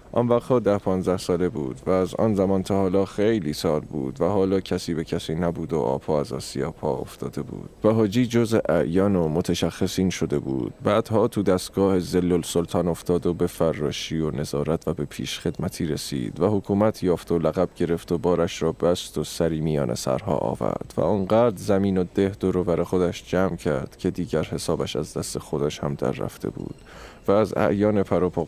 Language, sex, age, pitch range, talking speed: Persian, male, 20-39, 85-100 Hz, 190 wpm